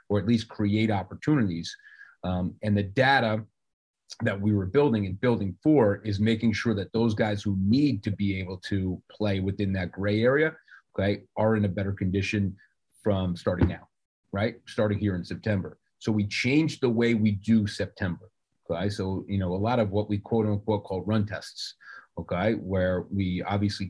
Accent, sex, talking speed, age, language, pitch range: American, male, 185 wpm, 40-59, English, 95-115 Hz